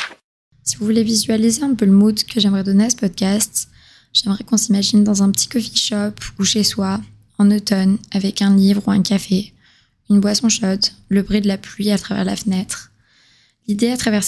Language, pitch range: French, 195-215 Hz